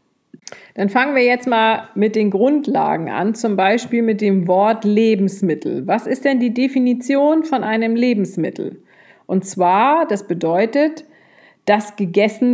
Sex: female